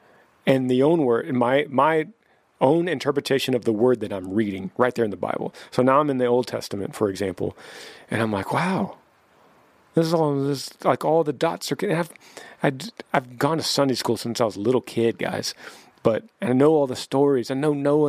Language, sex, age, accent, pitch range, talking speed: English, male, 40-59, American, 115-140 Hz, 210 wpm